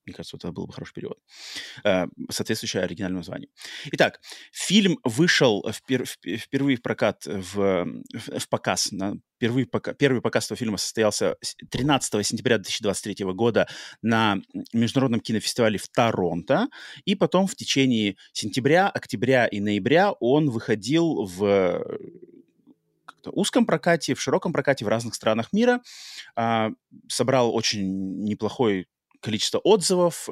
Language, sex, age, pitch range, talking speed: Russian, male, 30-49, 100-135 Hz, 125 wpm